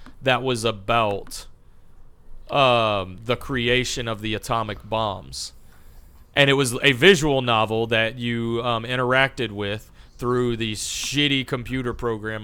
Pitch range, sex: 110-140 Hz, male